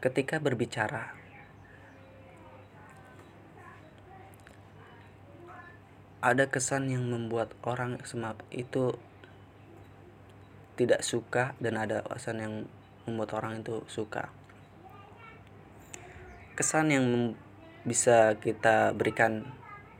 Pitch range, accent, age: 100-125 Hz, native, 20-39